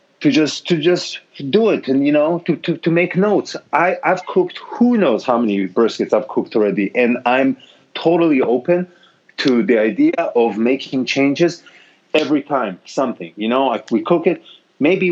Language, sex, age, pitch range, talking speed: English, male, 40-59, 130-170 Hz, 185 wpm